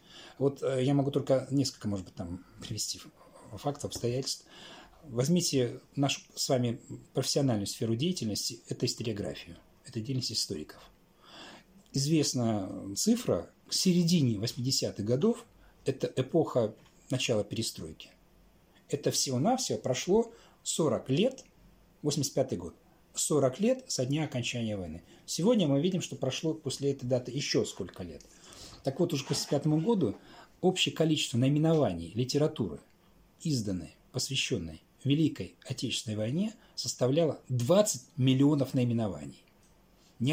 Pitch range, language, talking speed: 110-150 Hz, Russian, 115 wpm